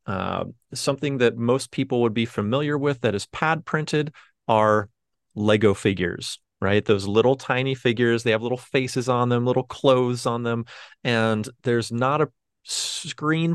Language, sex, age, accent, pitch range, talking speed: English, male, 30-49, American, 110-130 Hz, 160 wpm